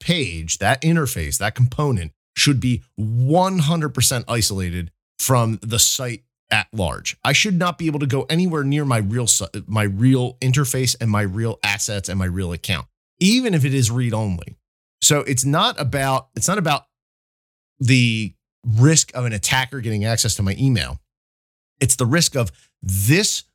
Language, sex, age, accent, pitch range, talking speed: English, male, 40-59, American, 105-140 Hz, 165 wpm